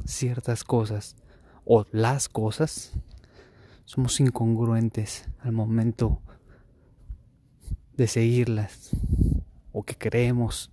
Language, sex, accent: Spanish, male, Mexican